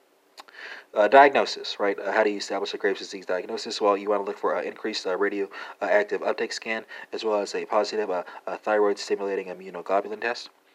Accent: American